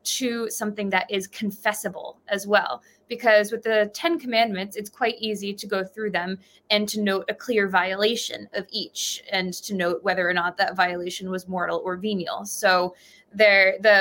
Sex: female